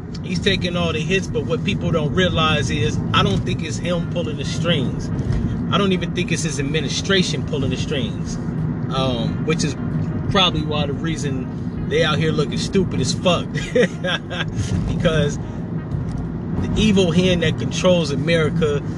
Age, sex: 30-49, male